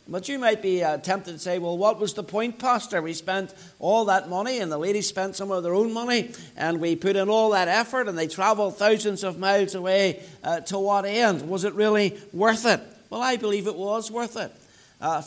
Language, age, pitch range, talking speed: English, 60-79, 175-205 Hz, 230 wpm